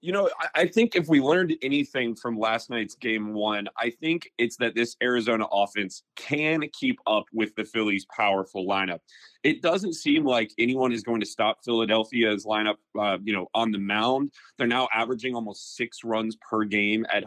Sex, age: male, 30-49